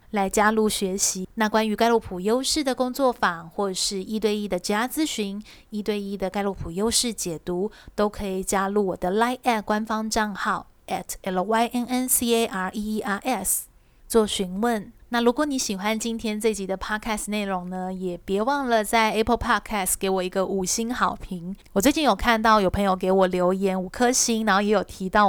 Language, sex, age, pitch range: Chinese, female, 20-39, 195-235 Hz